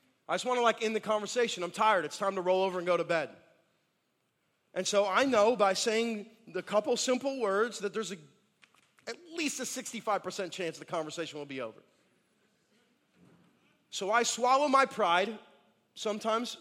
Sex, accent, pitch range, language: male, American, 155-220 Hz, English